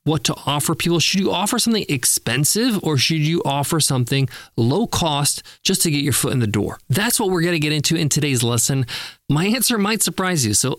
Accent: American